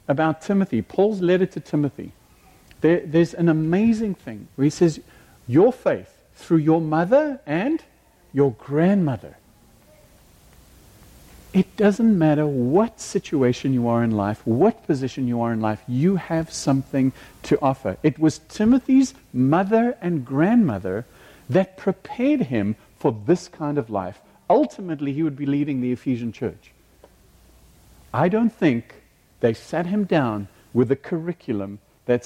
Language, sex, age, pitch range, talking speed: English, male, 60-79, 120-175 Hz, 140 wpm